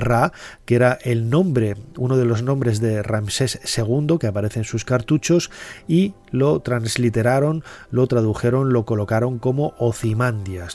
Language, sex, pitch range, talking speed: Spanish, male, 115-140 Hz, 145 wpm